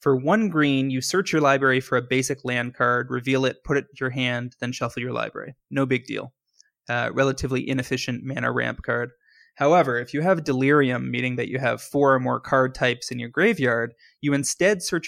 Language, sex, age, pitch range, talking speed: English, male, 20-39, 125-145 Hz, 205 wpm